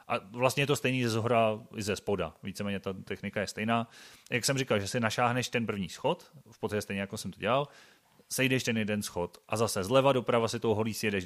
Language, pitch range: Czech, 100-120 Hz